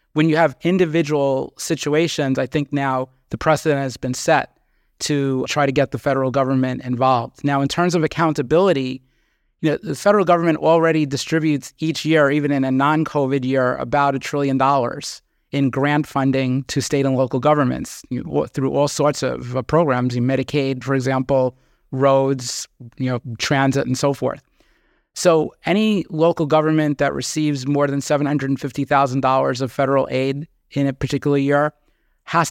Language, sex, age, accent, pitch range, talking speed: English, male, 30-49, American, 135-150 Hz, 165 wpm